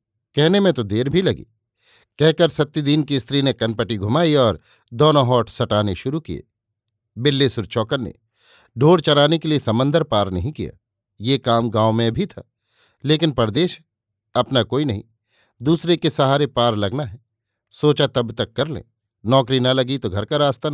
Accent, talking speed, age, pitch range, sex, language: native, 170 wpm, 50-69, 110-145 Hz, male, Hindi